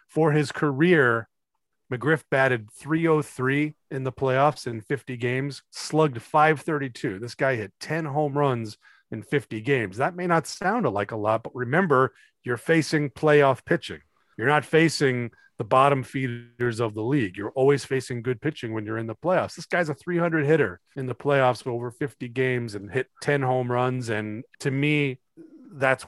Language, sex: English, male